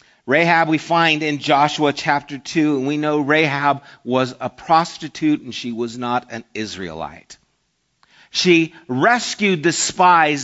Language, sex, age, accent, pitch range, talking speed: English, male, 50-69, American, 145-170 Hz, 140 wpm